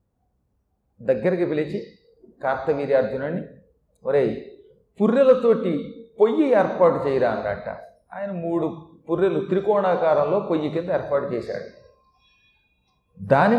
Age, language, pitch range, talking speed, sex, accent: 40-59, Telugu, 165-230 Hz, 75 wpm, male, native